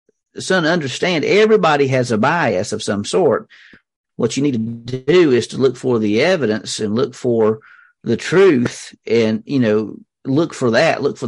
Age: 50-69